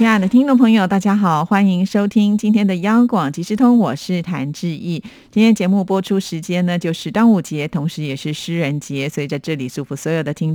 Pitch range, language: 155-200 Hz, Chinese